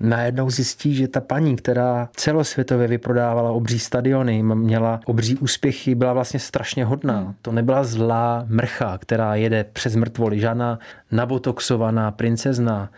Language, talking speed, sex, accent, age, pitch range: Czech, 130 wpm, male, native, 20-39, 115-130 Hz